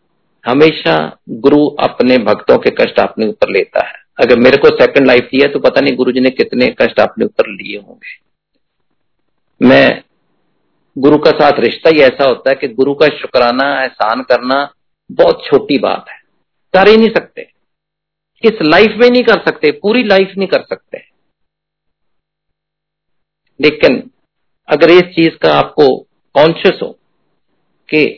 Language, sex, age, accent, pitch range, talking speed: Hindi, male, 50-69, native, 145-210 Hz, 155 wpm